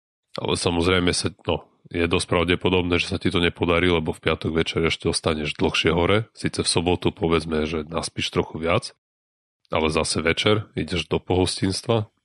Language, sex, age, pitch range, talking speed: Slovak, male, 30-49, 80-90 Hz, 165 wpm